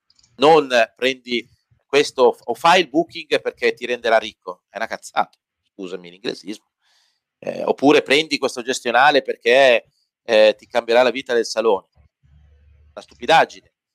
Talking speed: 130 wpm